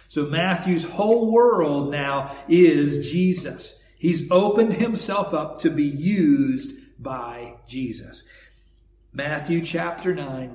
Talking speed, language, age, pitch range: 110 wpm, English, 50-69, 135-185 Hz